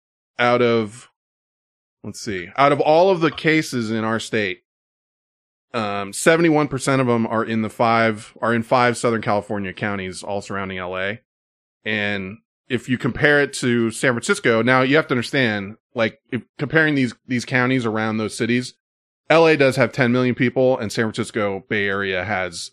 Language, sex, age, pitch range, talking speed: English, male, 20-39, 100-135 Hz, 170 wpm